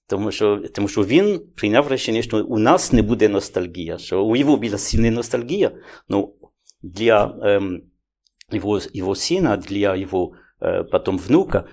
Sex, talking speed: male, 150 wpm